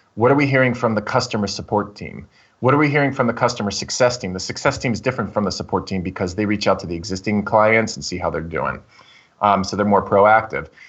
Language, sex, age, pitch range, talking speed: English, male, 30-49, 100-125 Hz, 250 wpm